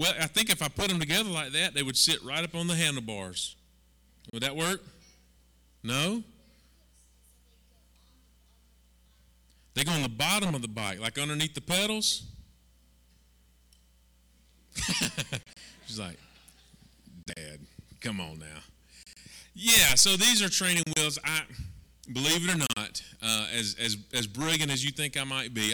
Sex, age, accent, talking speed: male, 40-59, American, 145 wpm